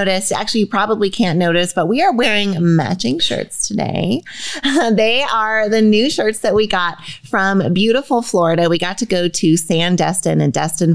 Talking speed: 180 wpm